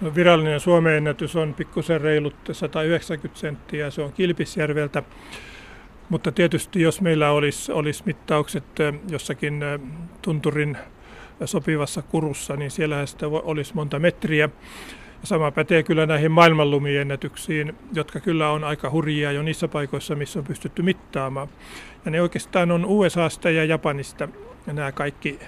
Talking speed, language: 125 wpm, Finnish